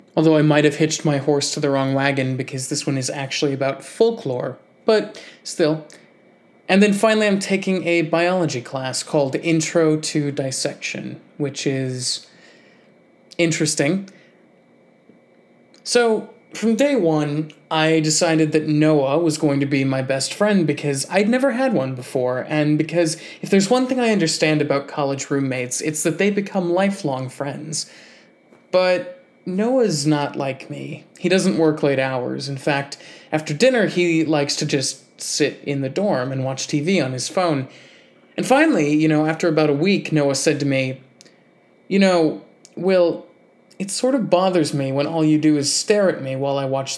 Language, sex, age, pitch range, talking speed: English, male, 20-39, 140-180 Hz, 170 wpm